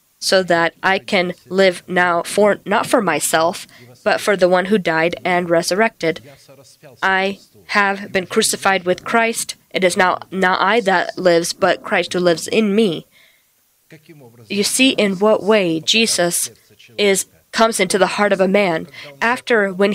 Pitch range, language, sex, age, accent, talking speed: 170-210 Hz, English, female, 20-39, American, 160 wpm